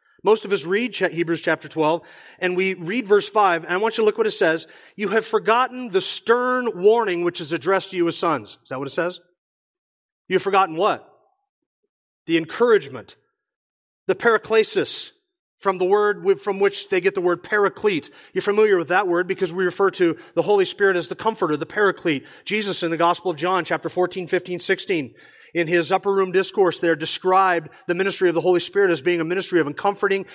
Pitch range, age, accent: 175-225 Hz, 30-49, American